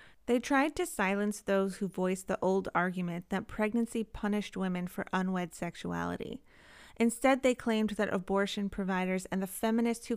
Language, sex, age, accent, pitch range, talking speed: English, female, 30-49, American, 190-220 Hz, 160 wpm